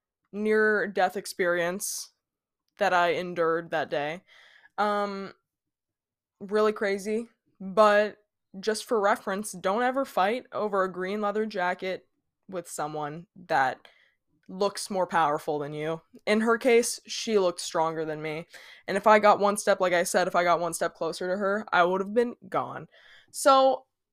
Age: 20-39